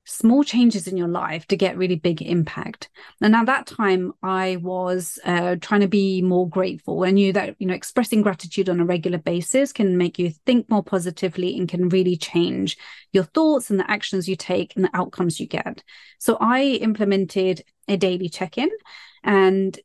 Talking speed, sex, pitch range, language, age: 185 wpm, female, 180-220 Hz, English, 30-49